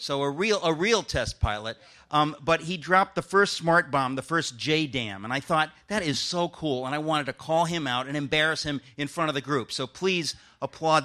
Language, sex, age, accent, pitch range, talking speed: English, male, 40-59, American, 120-160 Hz, 235 wpm